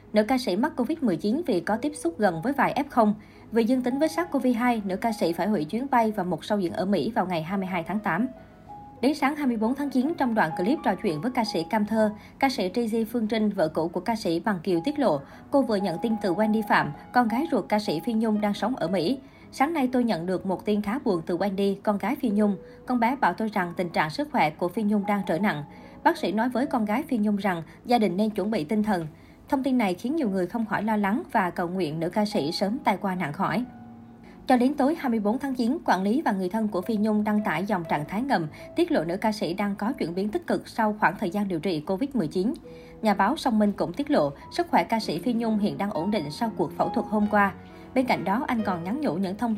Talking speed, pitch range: 270 wpm, 190-245 Hz